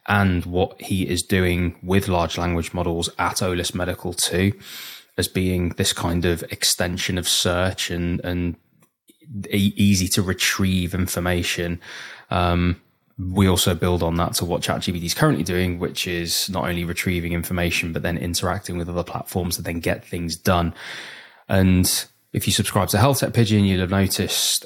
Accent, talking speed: British, 165 wpm